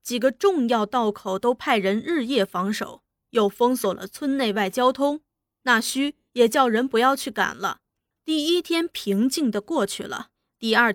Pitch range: 215-310 Hz